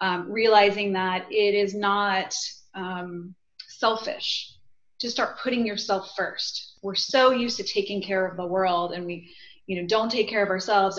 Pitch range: 190-225 Hz